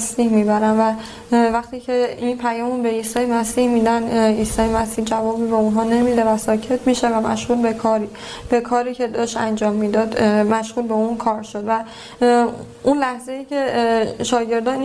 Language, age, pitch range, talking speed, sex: Persian, 10-29, 220-245 Hz, 165 wpm, female